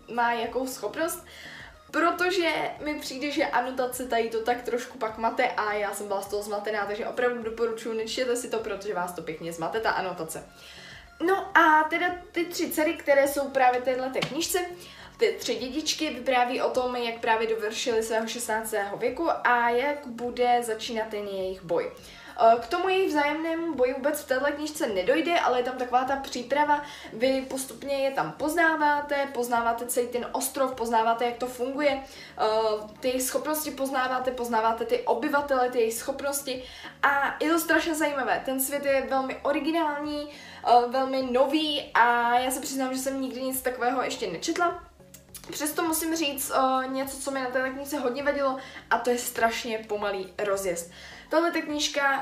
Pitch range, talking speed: 235-290 Hz, 165 wpm